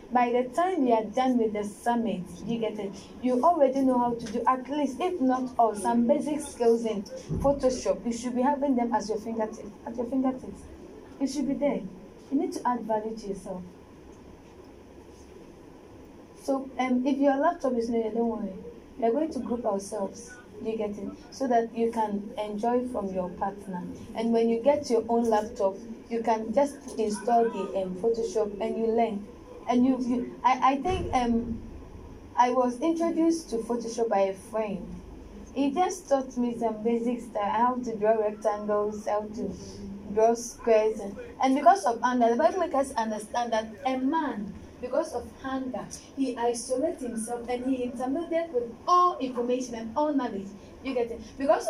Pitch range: 220-270 Hz